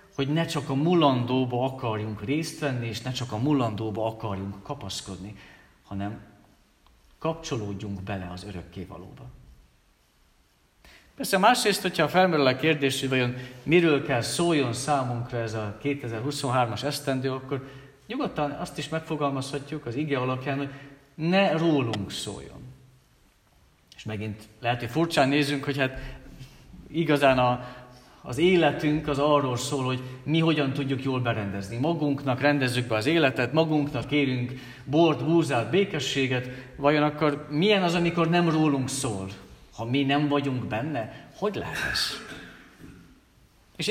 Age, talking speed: 50-69, 130 wpm